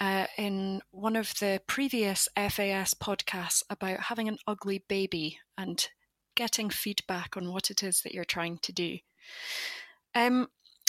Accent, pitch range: British, 190-240 Hz